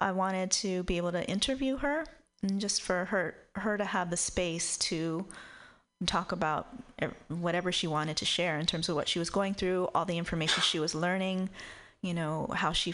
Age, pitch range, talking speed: 30-49, 170-195 Hz, 200 wpm